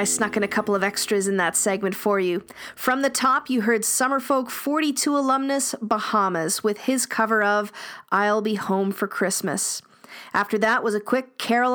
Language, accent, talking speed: English, American, 185 wpm